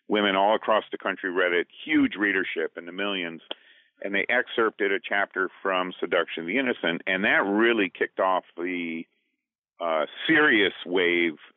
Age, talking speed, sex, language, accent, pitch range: 50-69, 160 wpm, male, English, American, 90-120 Hz